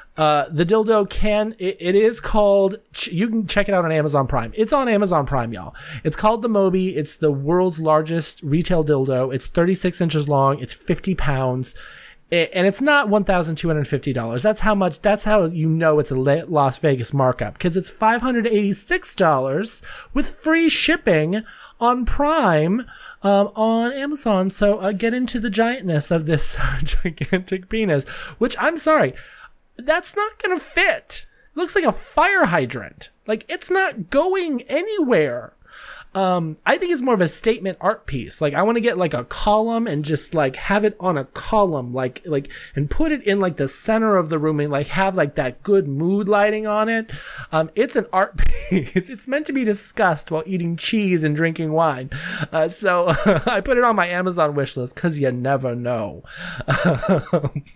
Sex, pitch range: male, 155-225 Hz